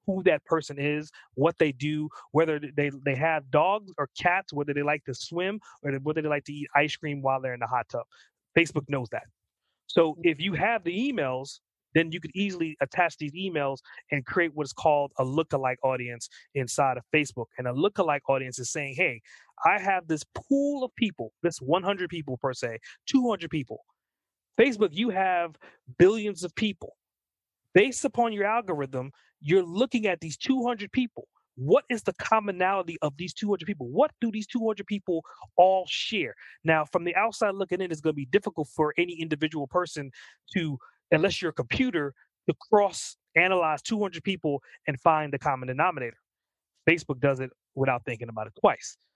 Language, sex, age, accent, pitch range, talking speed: English, male, 30-49, American, 140-190 Hz, 180 wpm